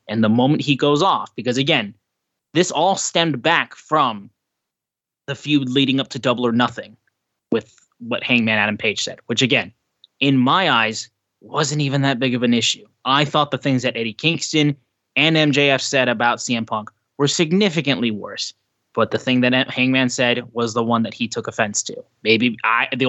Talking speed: 185 wpm